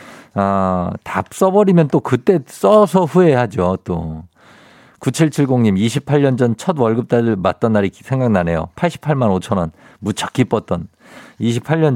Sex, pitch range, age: male, 110-165 Hz, 50-69